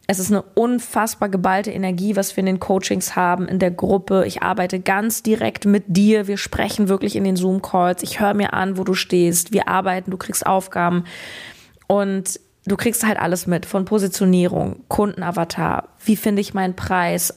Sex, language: female, German